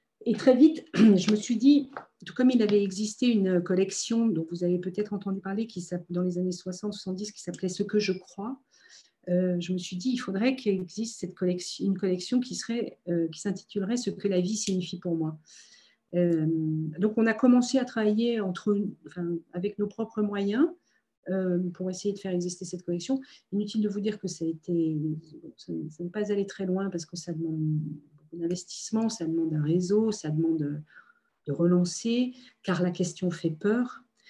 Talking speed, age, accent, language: 195 wpm, 50-69, French, French